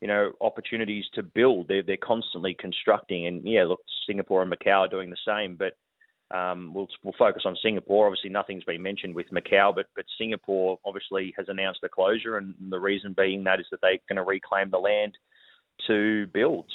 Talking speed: 195 wpm